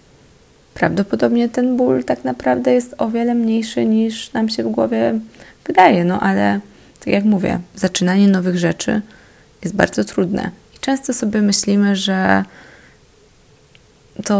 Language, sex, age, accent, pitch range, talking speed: Polish, female, 20-39, native, 175-210 Hz, 135 wpm